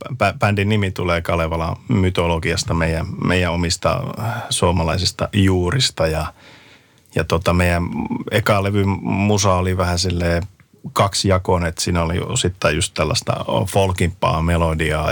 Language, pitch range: Finnish, 85-105 Hz